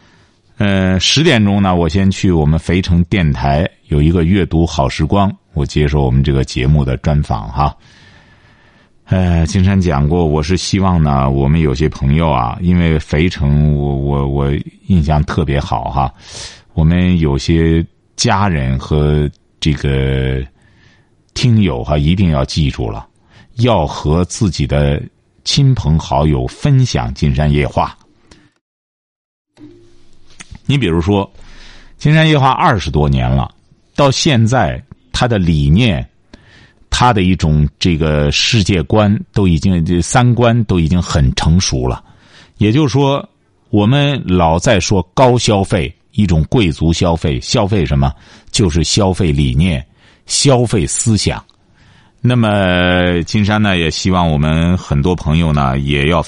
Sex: male